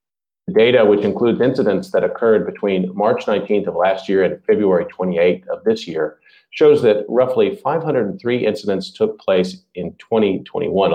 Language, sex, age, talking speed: English, male, 40-59, 150 wpm